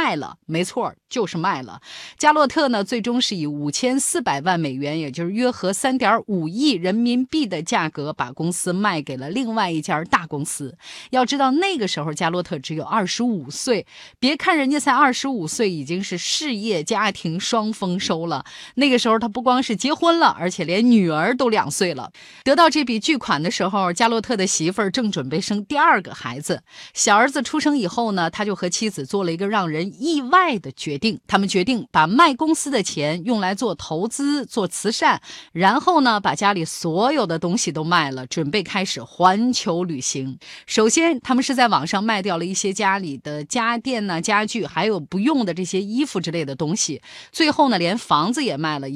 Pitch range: 170-255 Hz